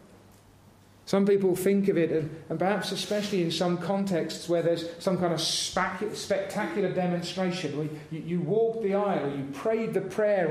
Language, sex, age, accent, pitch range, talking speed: English, male, 40-59, British, 185-280 Hz, 160 wpm